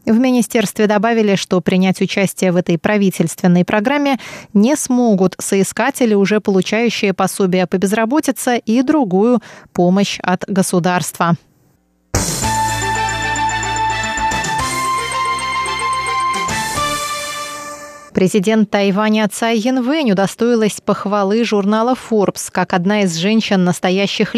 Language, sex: Russian, female